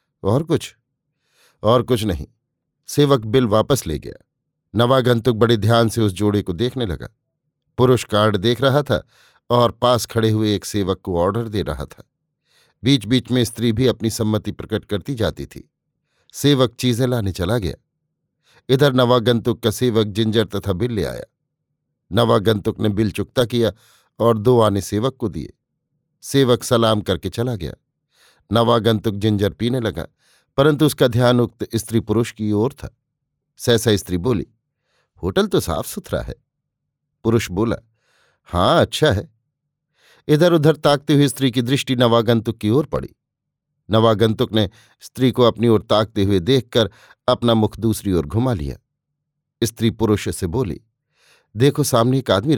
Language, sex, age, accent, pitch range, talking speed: Hindi, male, 50-69, native, 110-135 Hz, 155 wpm